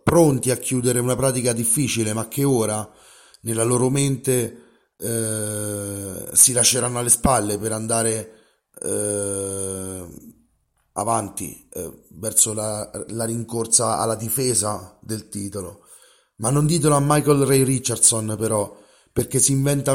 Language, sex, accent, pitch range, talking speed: Italian, male, native, 110-135 Hz, 125 wpm